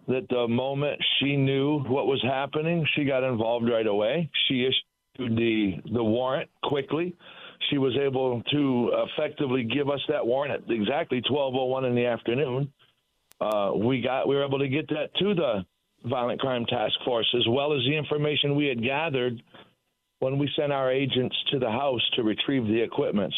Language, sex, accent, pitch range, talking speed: English, male, American, 120-140 Hz, 175 wpm